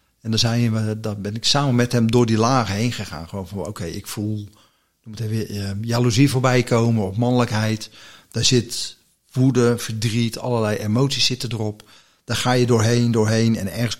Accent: Dutch